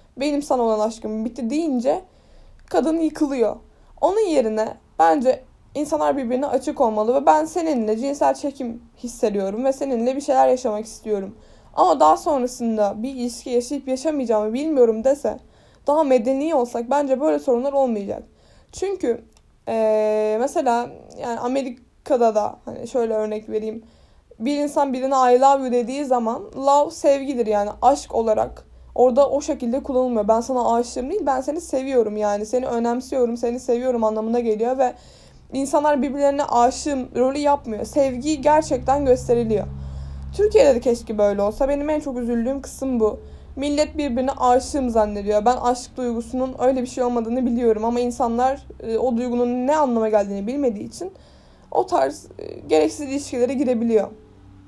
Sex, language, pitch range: female, Turkish, 230-275 Hz